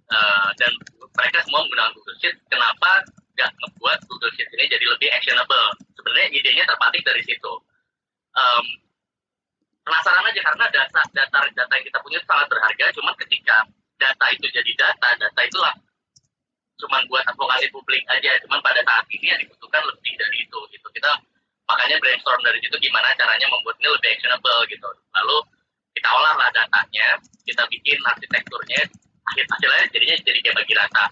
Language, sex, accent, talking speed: Indonesian, male, native, 150 wpm